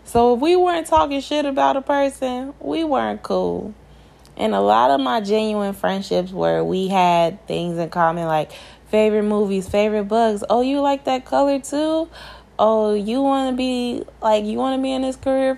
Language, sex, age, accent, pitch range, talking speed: English, female, 20-39, American, 145-220 Hz, 190 wpm